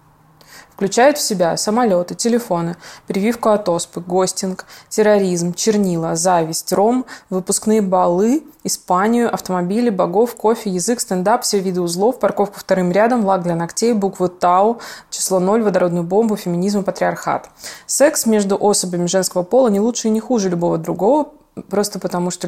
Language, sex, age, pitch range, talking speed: Russian, female, 20-39, 180-215 Hz, 140 wpm